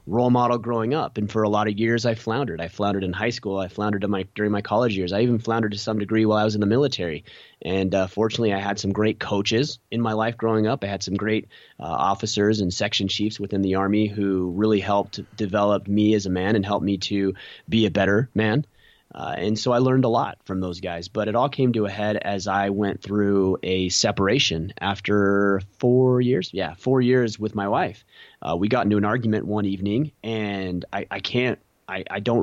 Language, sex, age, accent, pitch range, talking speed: English, male, 30-49, American, 100-120 Hz, 230 wpm